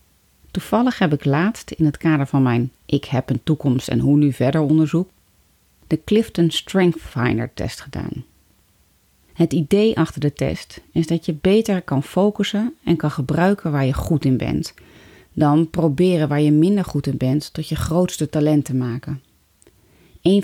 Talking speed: 170 wpm